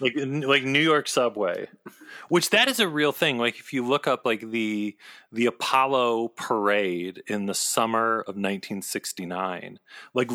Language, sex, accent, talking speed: English, male, American, 155 wpm